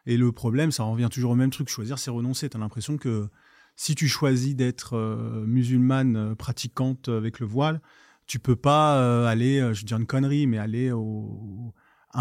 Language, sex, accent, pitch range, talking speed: French, male, French, 115-140 Hz, 210 wpm